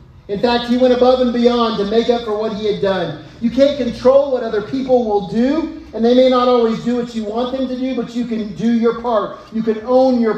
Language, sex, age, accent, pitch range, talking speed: English, male, 40-59, American, 200-235 Hz, 260 wpm